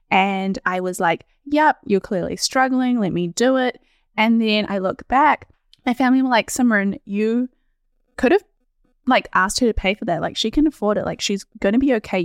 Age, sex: 10-29, female